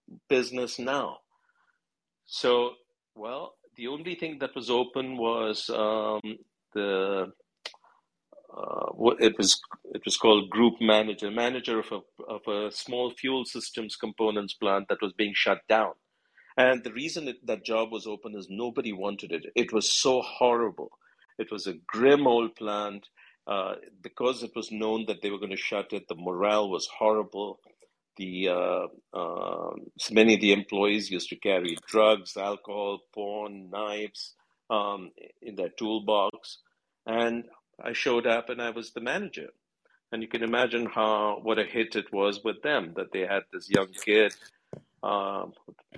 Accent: Indian